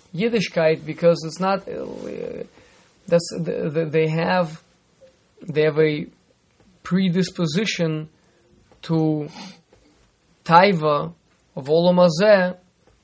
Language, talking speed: English, 85 wpm